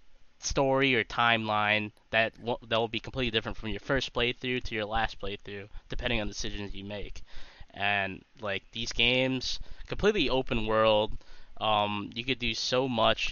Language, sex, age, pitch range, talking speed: English, male, 10-29, 105-125 Hz, 165 wpm